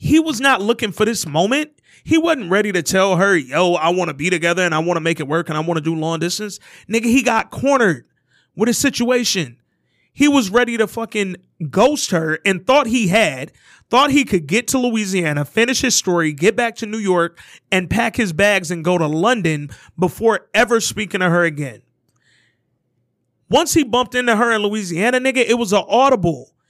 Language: English